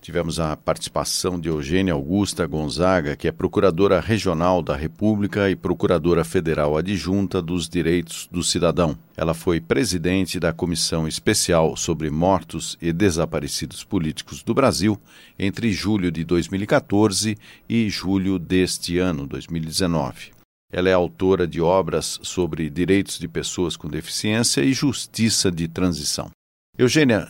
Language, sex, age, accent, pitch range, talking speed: Portuguese, male, 50-69, Brazilian, 85-100 Hz, 130 wpm